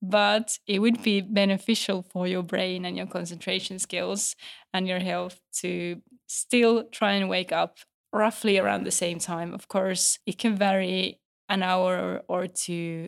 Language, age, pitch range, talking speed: Finnish, 20-39, 185-230 Hz, 160 wpm